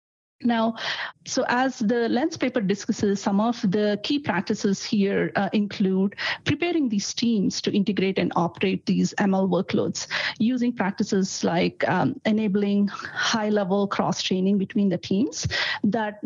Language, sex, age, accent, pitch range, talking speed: English, female, 50-69, Indian, 190-235 Hz, 135 wpm